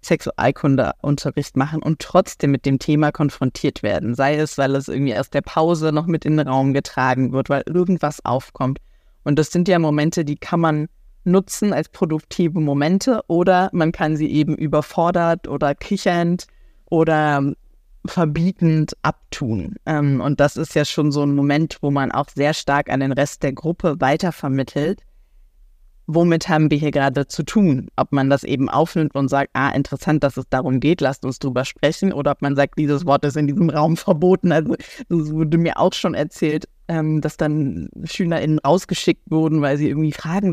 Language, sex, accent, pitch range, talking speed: German, female, German, 140-165 Hz, 180 wpm